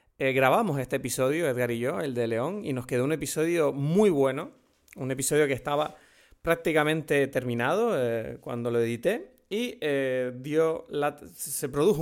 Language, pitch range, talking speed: Spanish, 125-150 Hz, 155 wpm